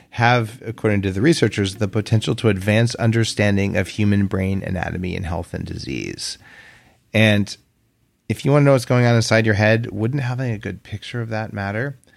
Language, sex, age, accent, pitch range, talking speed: English, male, 40-59, American, 95-115 Hz, 185 wpm